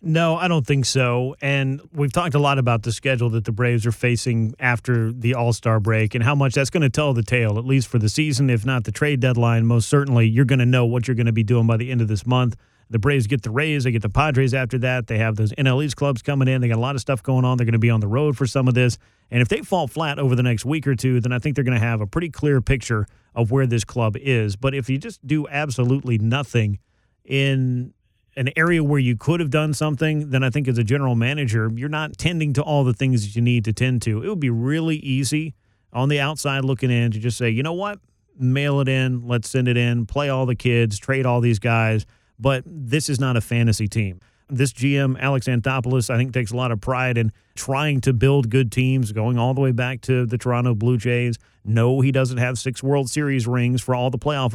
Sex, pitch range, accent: male, 115-135 Hz, American